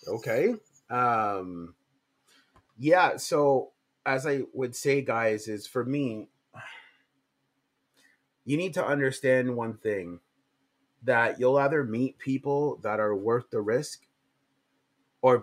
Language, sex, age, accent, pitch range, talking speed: English, male, 30-49, American, 120-150 Hz, 115 wpm